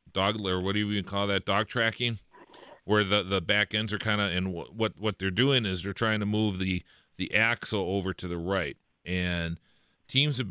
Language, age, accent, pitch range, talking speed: English, 40-59, American, 95-120 Hz, 215 wpm